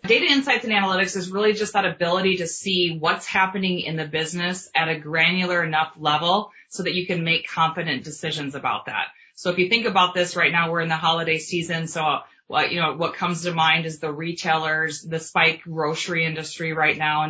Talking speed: 210 wpm